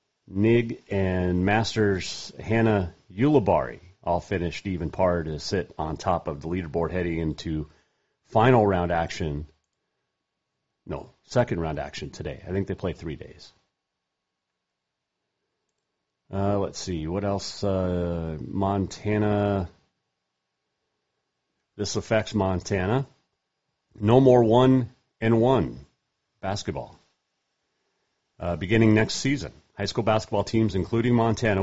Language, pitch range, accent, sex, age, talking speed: English, 90-110 Hz, American, male, 40-59, 110 wpm